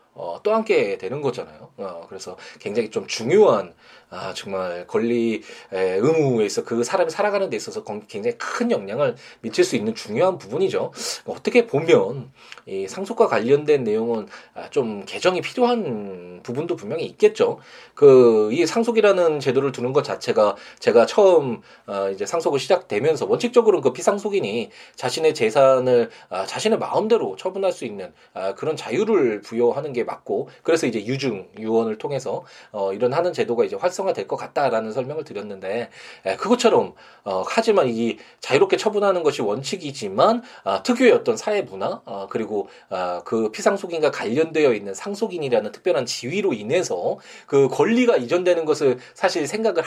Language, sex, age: Korean, male, 20-39